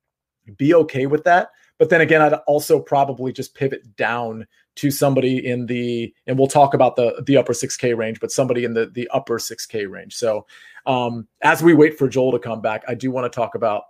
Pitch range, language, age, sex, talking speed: 130-175 Hz, English, 40-59, male, 215 wpm